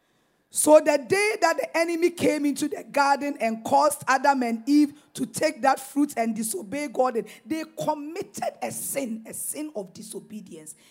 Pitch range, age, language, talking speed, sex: 220-325 Hz, 40-59, English, 165 wpm, female